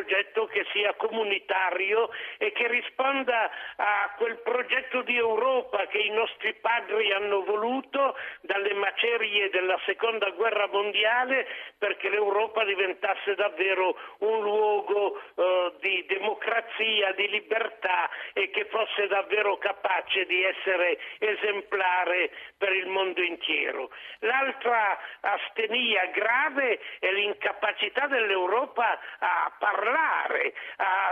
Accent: native